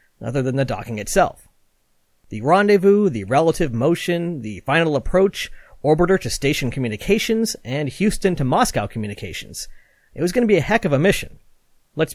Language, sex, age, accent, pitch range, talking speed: English, male, 40-59, American, 130-200 Hz, 165 wpm